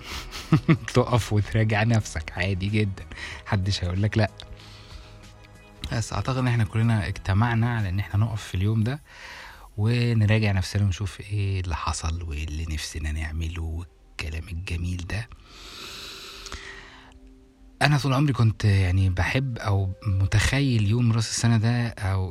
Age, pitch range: 20-39, 90-115 Hz